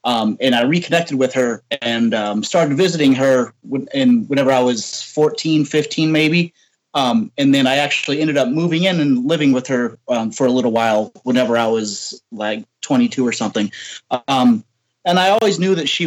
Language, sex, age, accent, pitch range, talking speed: English, male, 30-49, American, 125-165 Hz, 190 wpm